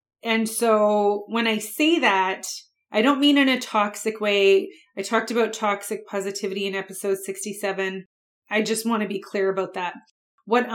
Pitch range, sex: 195-220 Hz, female